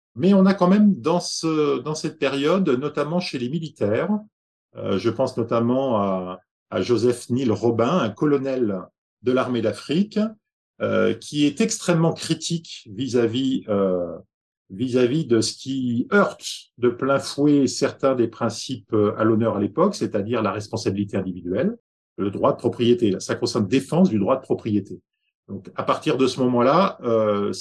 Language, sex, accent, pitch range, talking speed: French, male, French, 110-155 Hz, 150 wpm